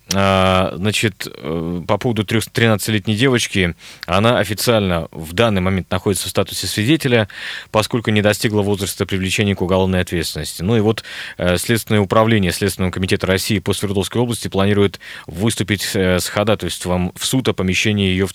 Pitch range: 95-115 Hz